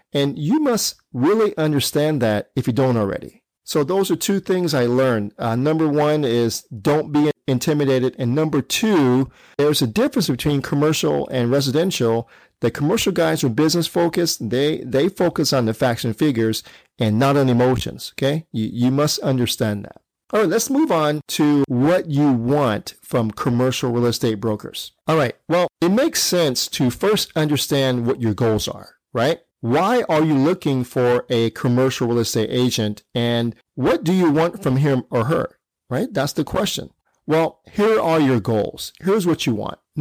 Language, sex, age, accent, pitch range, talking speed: English, male, 40-59, American, 120-155 Hz, 175 wpm